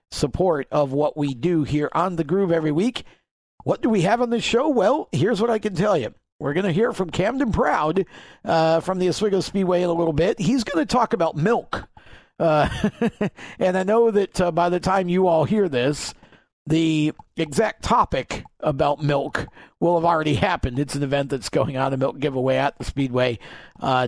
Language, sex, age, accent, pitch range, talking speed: English, male, 50-69, American, 135-175 Hz, 200 wpm